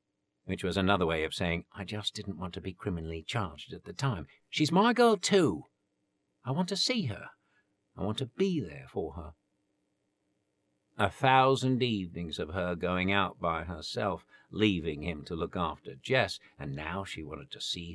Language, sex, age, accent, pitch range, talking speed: English, male, 60-79, British, 90-130 Hz, 180 wpm